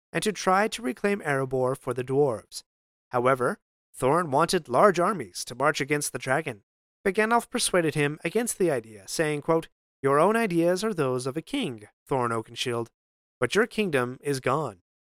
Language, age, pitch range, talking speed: English, 30-49, 130-180 Hz, 170 wpm